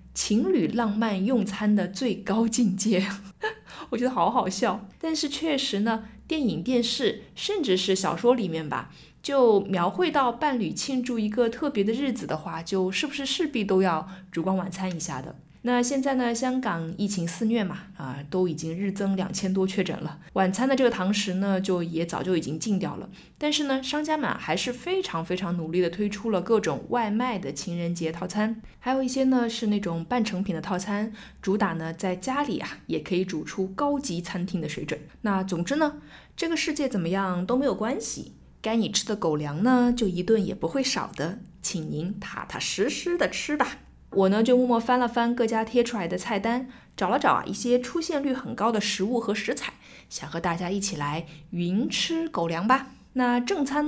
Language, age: Chinese, 20-39